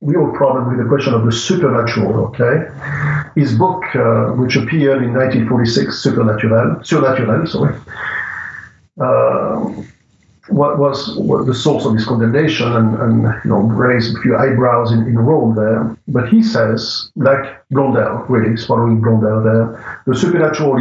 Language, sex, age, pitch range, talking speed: English, male, 50-69, 115-140 Hz, 140 wpm